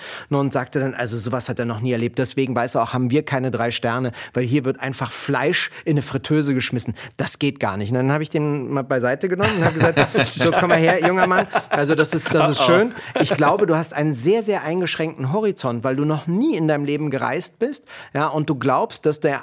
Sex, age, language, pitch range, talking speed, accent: male, 40-59, German, 130-165 Hz, 235 wpm, German